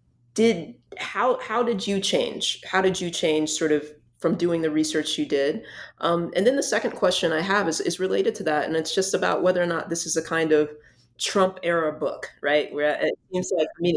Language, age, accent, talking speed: English, 20-39, American, 230 wpm